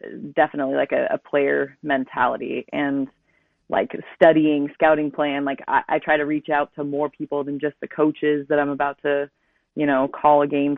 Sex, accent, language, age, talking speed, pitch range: female, American, English, 20-39, 190 wpm, 145-160 Hz